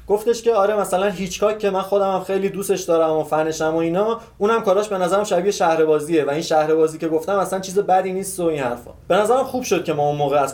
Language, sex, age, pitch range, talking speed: Persian, male, 30-49, 155-200 Hz, 235 wpm